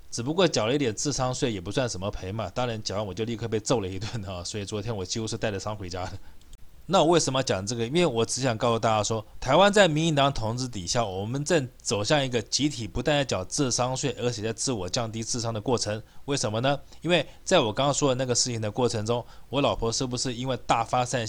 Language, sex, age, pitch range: Chinese, male, 20-39, 110-150 Hz